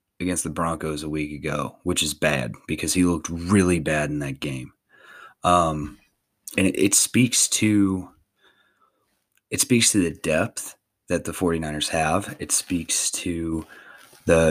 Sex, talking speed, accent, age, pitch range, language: male, 150 wpm, American, 30-49, 85-100 Hz, English